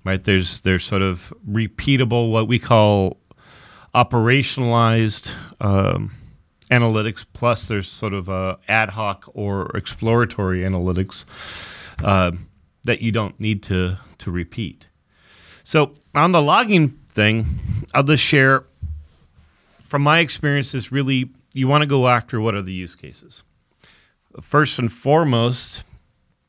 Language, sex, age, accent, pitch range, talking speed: English, male, 40-59, American, 95-125 Hz, 125 wpm